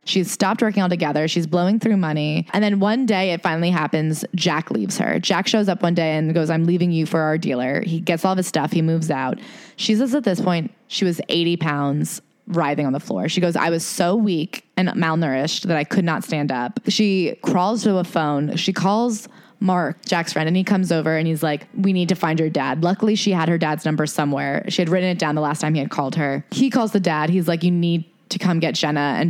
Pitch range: 160-205 Hz